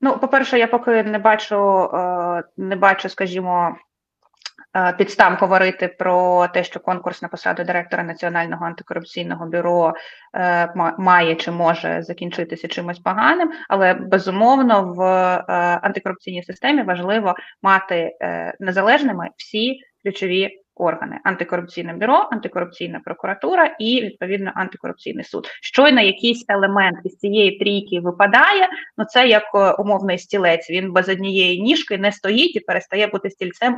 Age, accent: 20-39, native